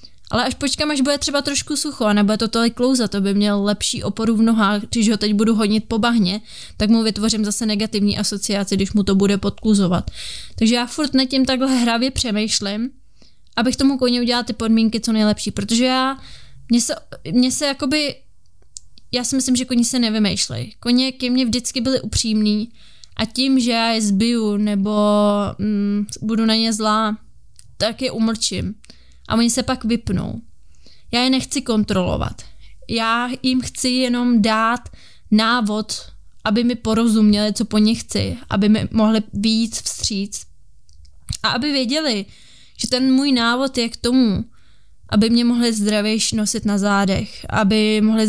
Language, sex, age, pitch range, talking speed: Czech, female, 20-39, 210-245 Hz, 165 wpm